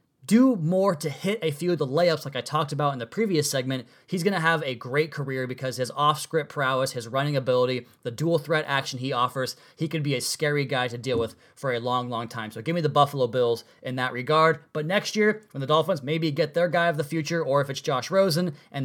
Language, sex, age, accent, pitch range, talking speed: English, male, 20-39, American, 140-170 Hz, 250 wpm